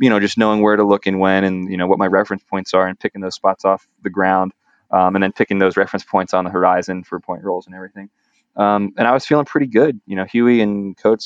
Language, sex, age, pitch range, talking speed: English, male, 20-39, 95-110 Hz, 270 wpm